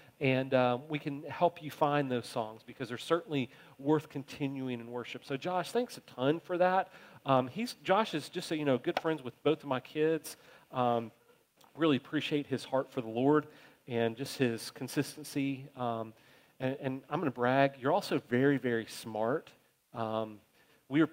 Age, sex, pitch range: 40-59, male, 125-150 Hz